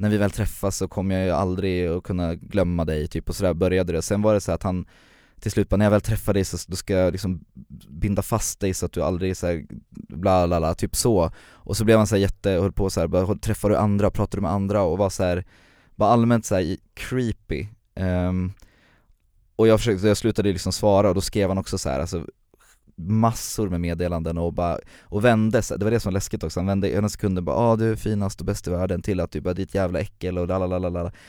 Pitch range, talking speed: 90-105 Hz, 250 wpm